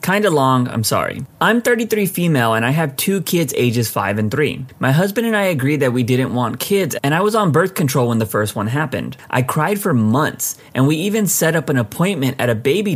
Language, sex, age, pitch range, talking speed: English, male, 30-49, 120-160 Hz, 235 wpm